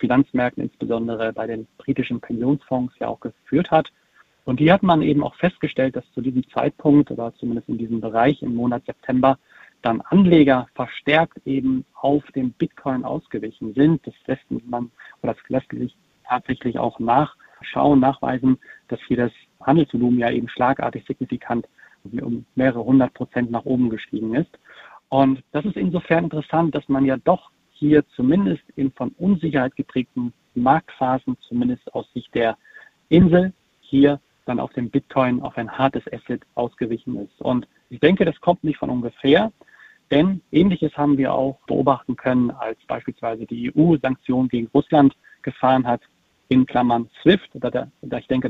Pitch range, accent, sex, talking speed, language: 125-145 Hz, German, male, 160 wpm, German